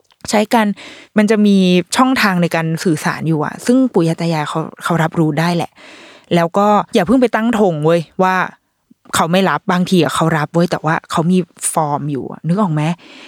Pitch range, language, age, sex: 170-230 Hz, Thai, 20-39, female